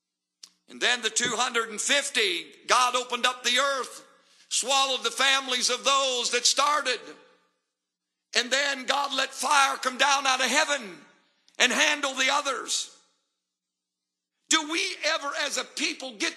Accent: American